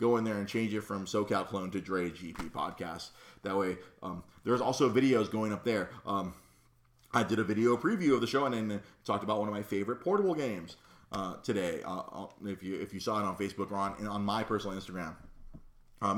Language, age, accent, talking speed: English, 30-49, American, 220 wpm